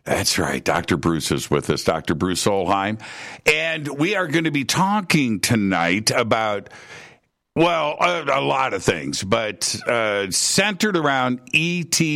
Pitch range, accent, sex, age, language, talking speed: 95-140 Hz, American, male, 60-79, English, 145 wpm